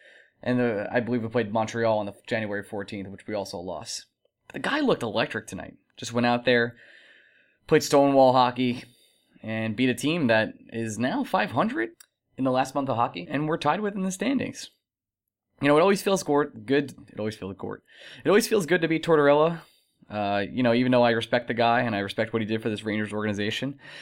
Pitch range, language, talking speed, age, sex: 110-165 Hz, English, 215 wpm, 20-39, male